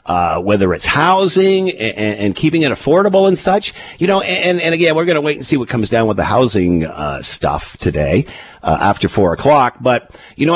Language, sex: English, male